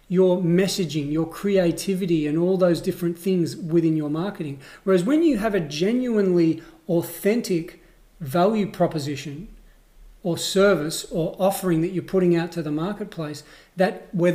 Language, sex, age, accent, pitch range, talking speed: English, male, 40-59, Australian, 150-190 Hz, 140 wpm